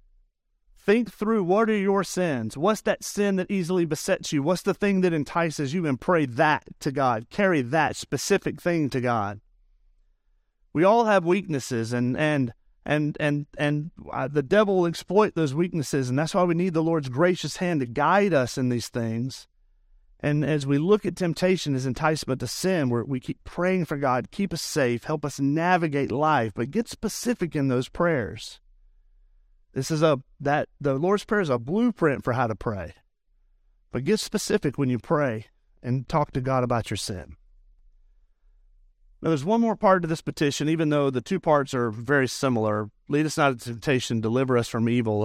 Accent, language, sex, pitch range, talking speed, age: American, English, male, 120-175 Hz, 185 wpm, 40-59